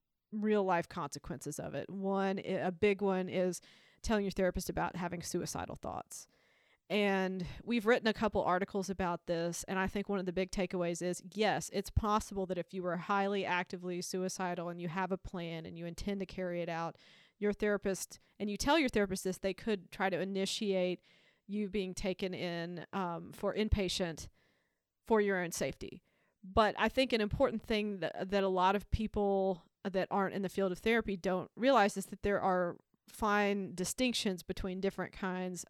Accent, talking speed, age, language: American, 185 wpm, 40-59, English